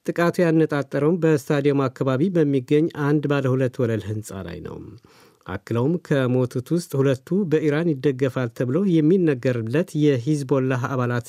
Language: Amharic